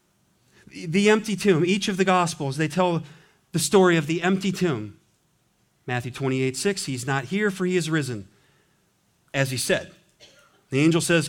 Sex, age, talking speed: male, 40-59, 160 wpm